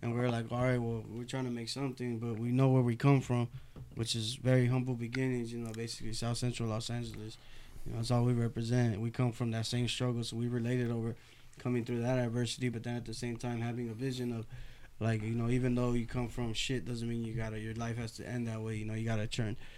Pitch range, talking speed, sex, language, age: 115-125 Hz, 260 wpm, male, English, 20-39